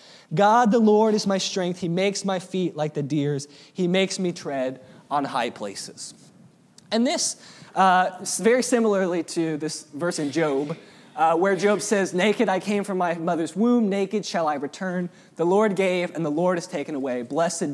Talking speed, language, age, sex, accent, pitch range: 185 wpm, English, 20-39, male, American, 180-235 Hz